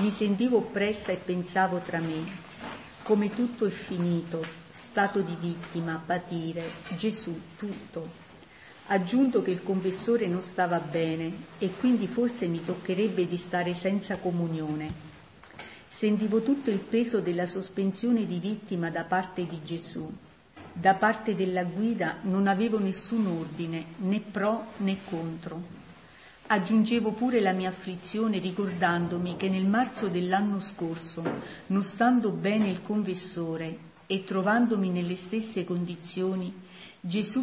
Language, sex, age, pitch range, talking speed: Italian, female, 50-69, 175-210 Hz, 125 wpm